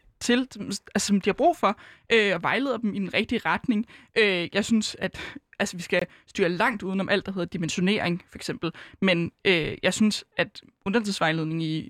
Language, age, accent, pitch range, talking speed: Danish, 20-39, native, 185-225 Hz, 190 wpm